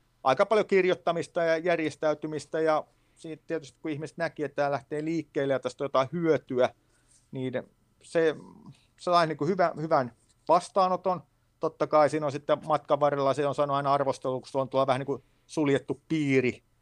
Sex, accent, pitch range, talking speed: male, native, 125-150 Hz, 155 wpm